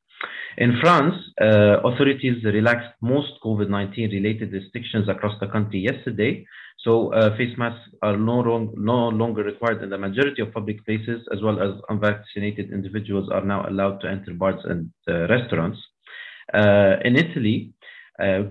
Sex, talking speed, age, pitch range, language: male, 145 wpm, 30-49, 100-115 Hz, English